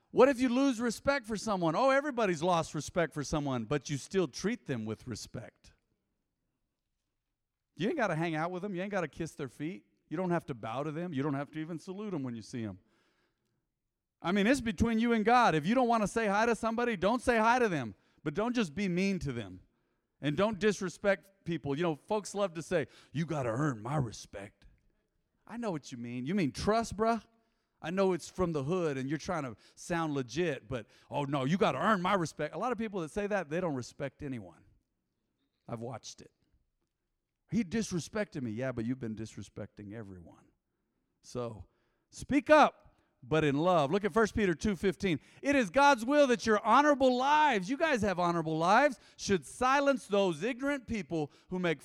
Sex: male